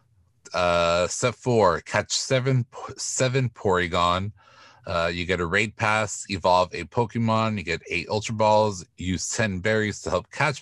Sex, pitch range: male, 90-115 Hz